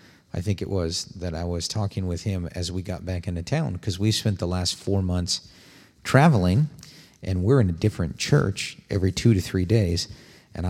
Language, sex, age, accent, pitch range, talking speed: English, male, 50-69, American, 90-110 Hz, 200 wpm